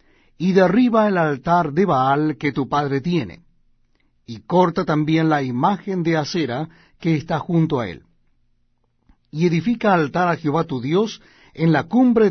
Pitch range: 145-175 Hz